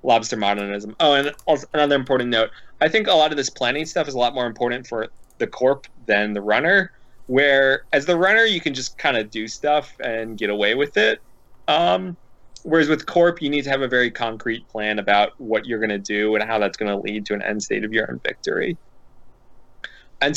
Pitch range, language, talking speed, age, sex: 115-150 Hz, English, 220 wpm, 20-39, male